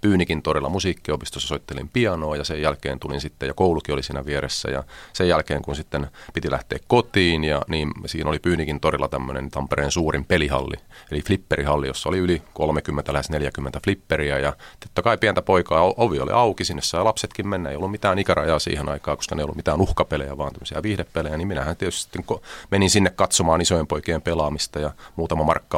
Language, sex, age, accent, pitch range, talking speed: Finnish, male, 30-49, native, 70-85 Hz, 185 wpm